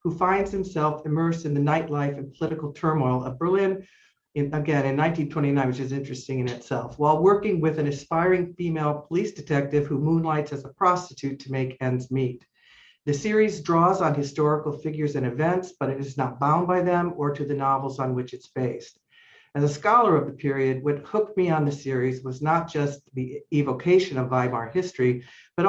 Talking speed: 190 wpm